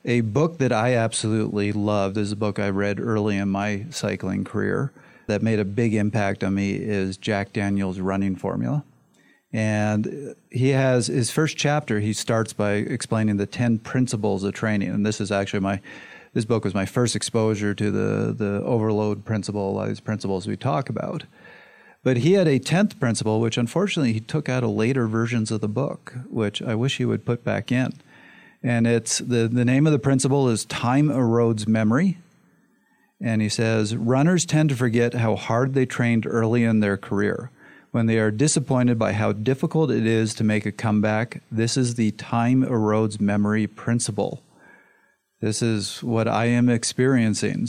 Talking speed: 185 wpm